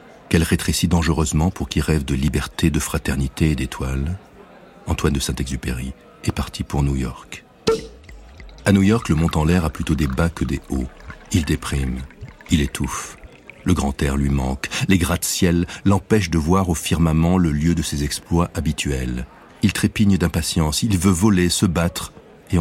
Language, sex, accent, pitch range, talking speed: French, male, French, 70-90 Hz, 175 wpm